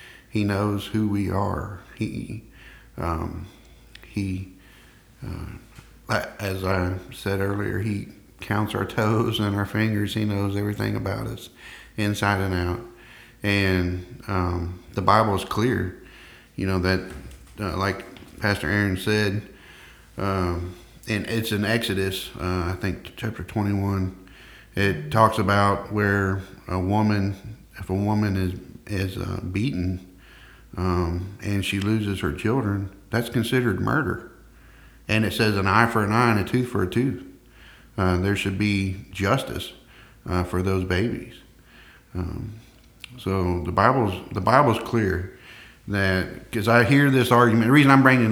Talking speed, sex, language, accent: 140 wpm, male, English, American